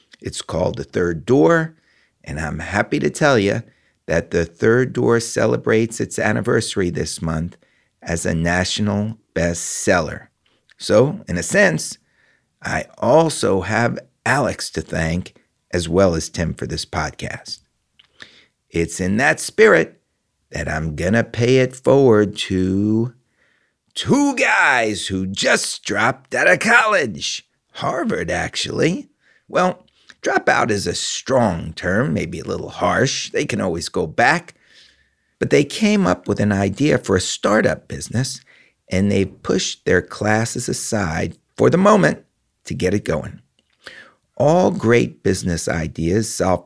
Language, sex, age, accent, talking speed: English, male, 50-69, American, 140 wpm